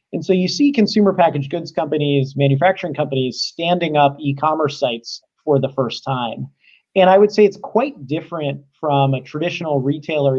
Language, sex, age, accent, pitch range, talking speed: English, male, 30-49, American, 135-170 Hz, 170 wpm